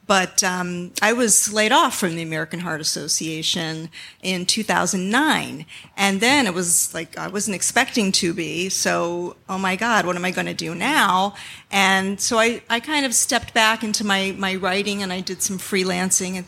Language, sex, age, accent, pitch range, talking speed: English, female, 40-59, American, 175-205 Hz, 190 wpm